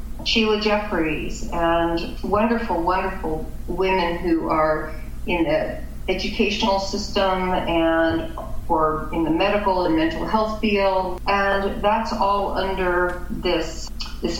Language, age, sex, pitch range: English, 40-59, female, 160-195 Hz